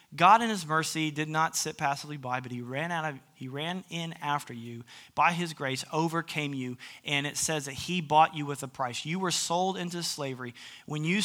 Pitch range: 145-180 Hz